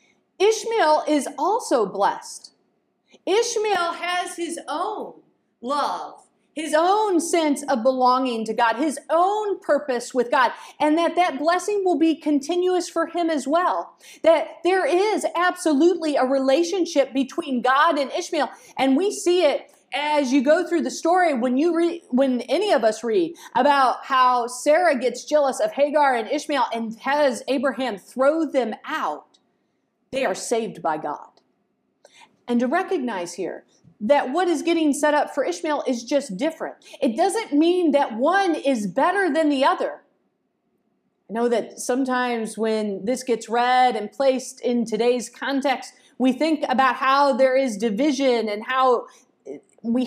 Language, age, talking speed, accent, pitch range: English, 40-59, 150 wpm, American, 255-335 Hz